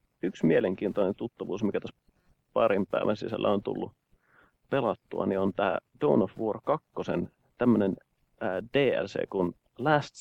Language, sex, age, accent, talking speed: Finnish, male, 30-49, native, 130 wpm